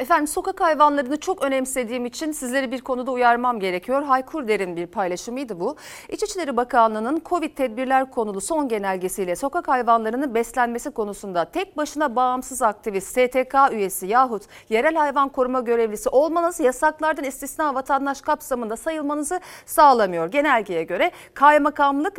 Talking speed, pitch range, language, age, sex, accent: 130 wpm, 210-310 Hz, Turkish, 40-59, female, native